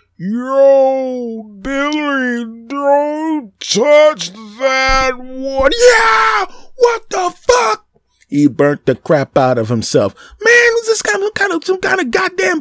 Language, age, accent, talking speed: English, 30-49, American, 140 wpm